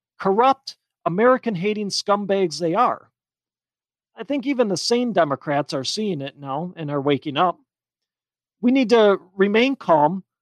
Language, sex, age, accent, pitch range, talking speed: English, male, 40-59, American, 165-235 Hz, 145 wpm